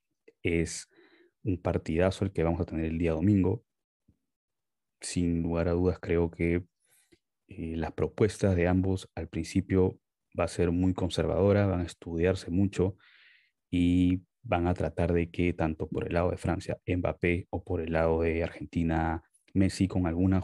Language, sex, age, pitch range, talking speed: Spanish, male, 30-49, 85-100 Hz, 160 wpm